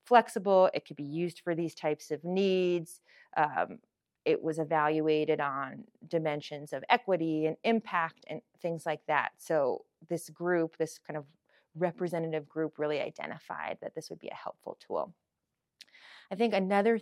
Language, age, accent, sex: English, 30-49, American, female